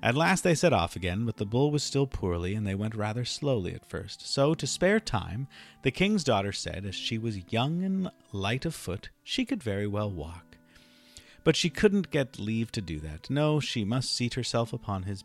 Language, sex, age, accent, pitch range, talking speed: English, male, 40-59, American, 95-140 Hz, 215 wpm